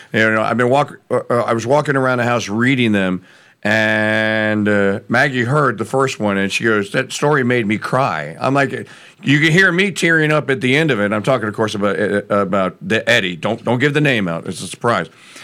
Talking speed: 235 wpm